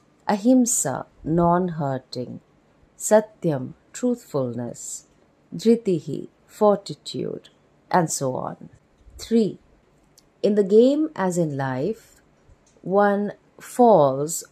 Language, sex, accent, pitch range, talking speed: English, female, Indian, 140-200 Hz, 75 wpm